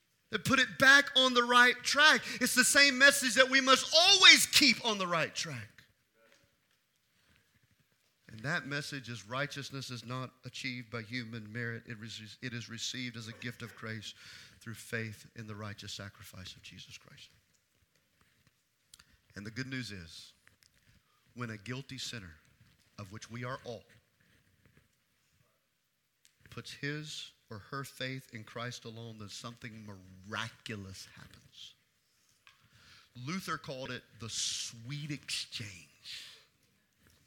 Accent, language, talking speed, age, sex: American, English, 130 wpm, 40-59, male